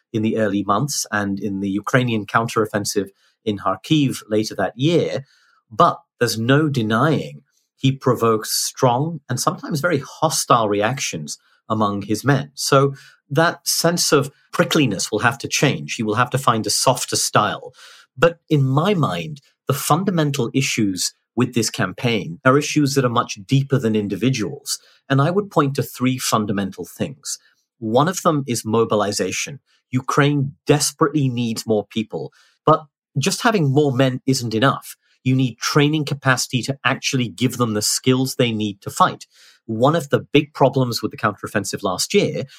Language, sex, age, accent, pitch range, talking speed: English, male, 40-59, British, 110-145 Hz, 160 wpm